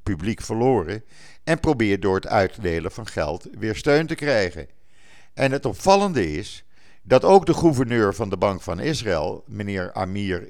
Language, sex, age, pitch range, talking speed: Dutch, male, 50-69, 95-135 Hz, 160 wpm